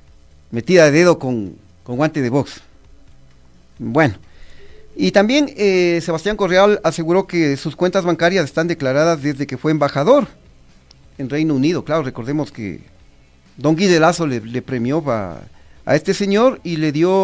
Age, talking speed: 40-59, 155 wpm